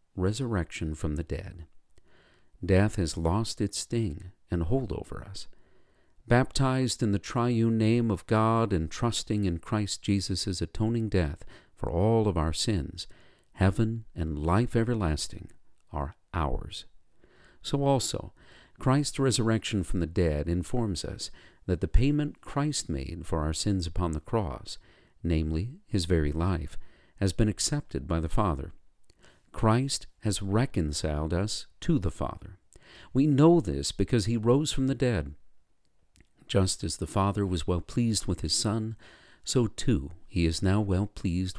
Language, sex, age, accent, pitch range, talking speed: English, male, 50-69, American, 85-115 Hz, 145 wpm